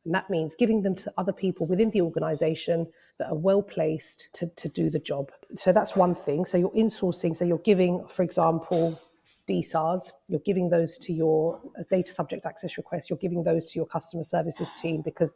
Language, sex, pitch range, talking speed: English, female, 160-190 Hz, 195 wpm